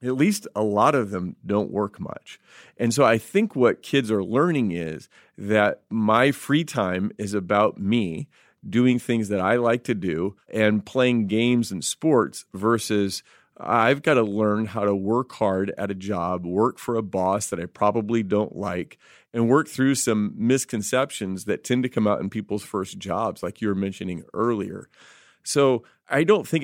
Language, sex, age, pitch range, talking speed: English, male, 40-59, 100-125 Hz, 180 wpm